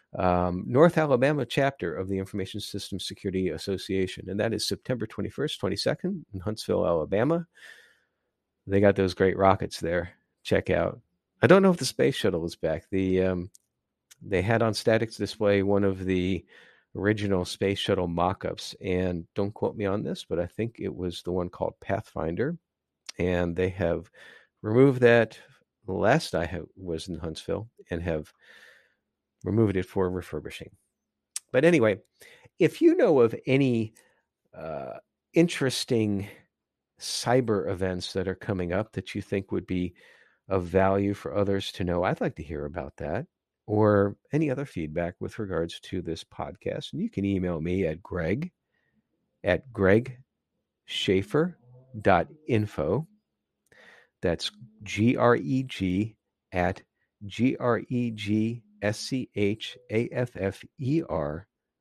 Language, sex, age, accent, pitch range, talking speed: English, male, 50-69, American, 95-120 Hz, 135 wpm